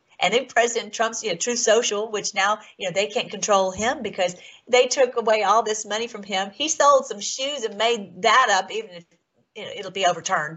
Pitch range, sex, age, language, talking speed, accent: 180-230 Hz, female, 40-59, English, 225 wpm, American